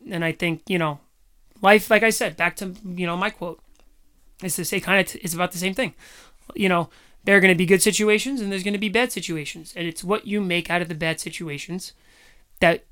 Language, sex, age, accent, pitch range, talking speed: English, male, 30-49, American, 175-205 Hz, 240 wpm